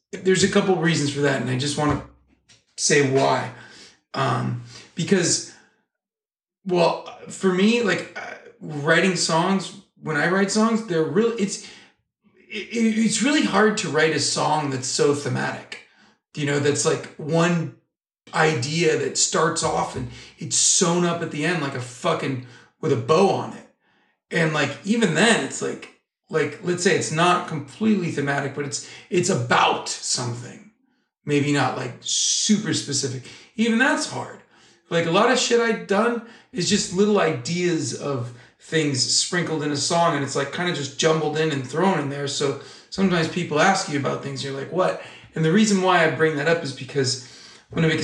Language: English